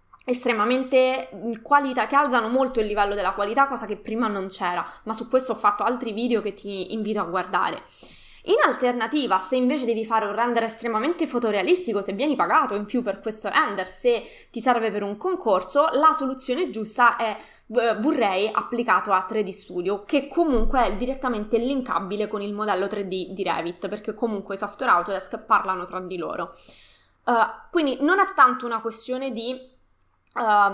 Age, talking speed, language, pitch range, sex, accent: 20-39, 175 wpm, Italian, 210-270 Hz, female, native